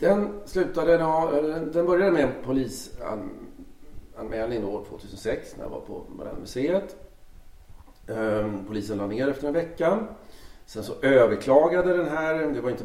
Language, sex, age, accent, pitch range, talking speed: Swedish, male, 40-59, native, 105-150 Hz, 135 wpm